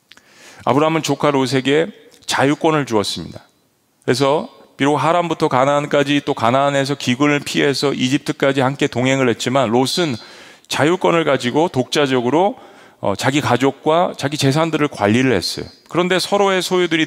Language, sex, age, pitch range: Korean, male, 40-59, 120-160 Hz